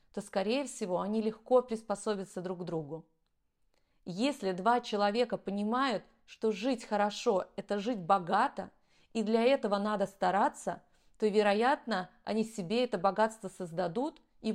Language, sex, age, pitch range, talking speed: Russian, female, 30-49, 195-245 Hz, 130 wpm